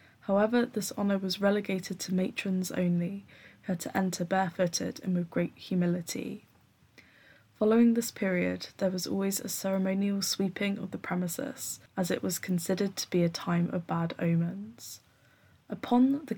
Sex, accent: female, British